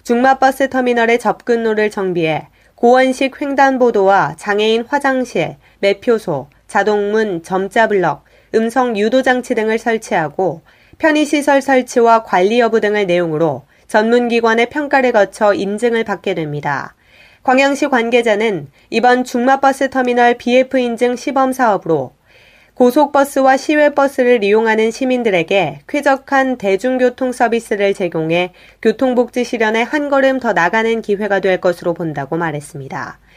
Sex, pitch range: female, 190-250 Hz